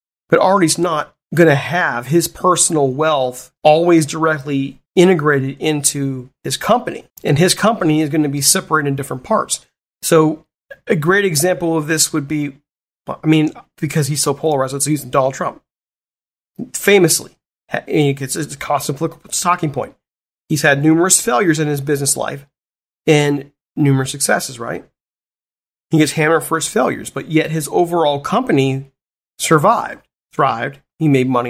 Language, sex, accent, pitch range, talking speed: English, male, American, 140-165 Hz, 150 wpm